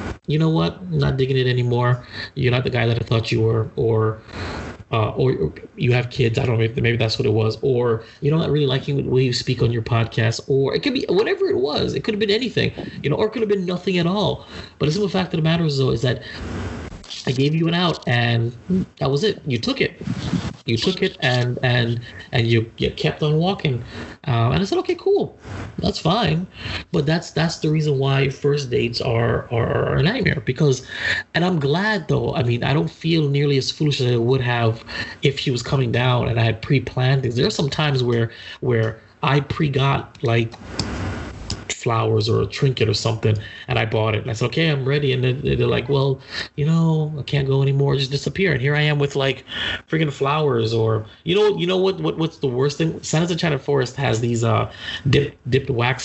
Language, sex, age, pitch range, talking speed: English, male, 30-49, 115-150 Hz, 230 wpm